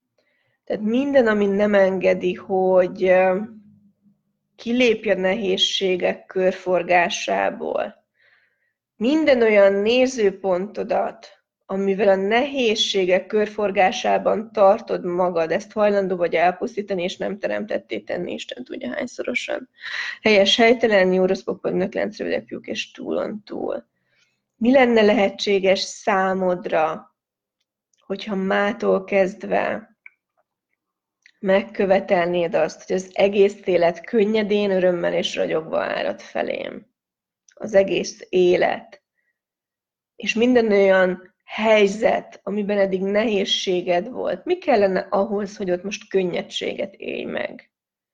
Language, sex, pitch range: Hungarian, female, 185-215 Hz